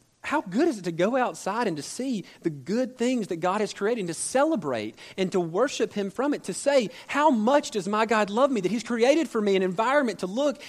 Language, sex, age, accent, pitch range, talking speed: English, male, 40-59, American, 165-230 Hz, 245 wpm